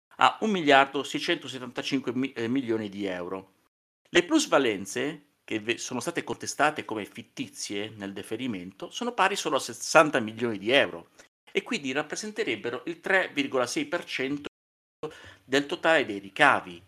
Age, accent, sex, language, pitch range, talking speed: 50-69, native, male, Italian, 105-145 Hz, 120 wpm